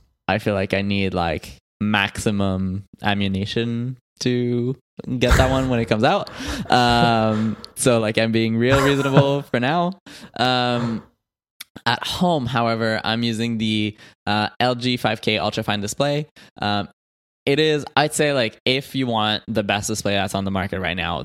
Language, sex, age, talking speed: English, male, 20-39, 155 wpm